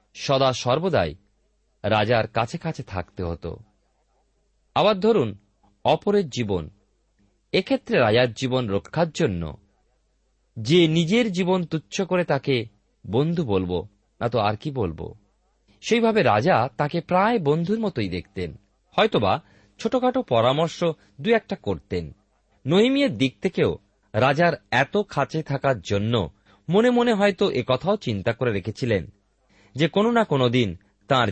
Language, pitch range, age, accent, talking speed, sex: Bengali, 100-160 Hz, 40-59, native, 120 wpm, male